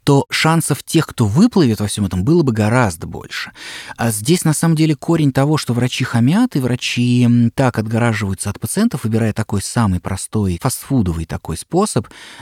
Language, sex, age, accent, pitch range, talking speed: Russian, male, 20-39, native, 100-135 Hz, 170 wpm